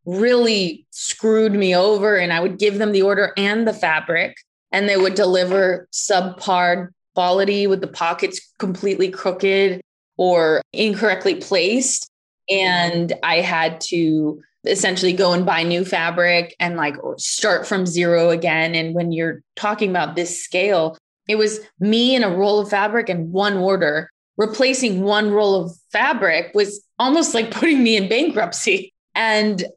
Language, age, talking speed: English, 20-39, 150 wpm